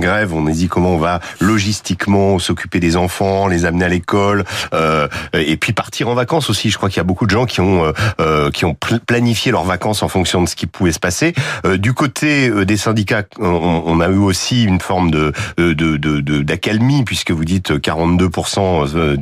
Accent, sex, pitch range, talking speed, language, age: French, male, 85-105 Hz, 215 wpm, French, 40-59